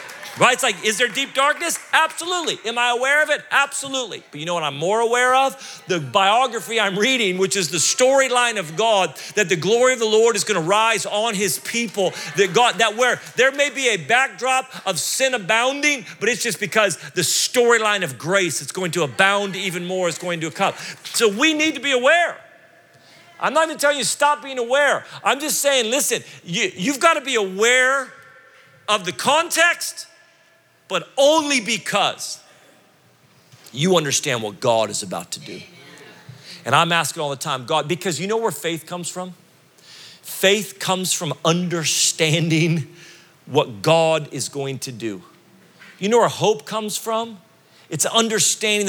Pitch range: 165-255 Hz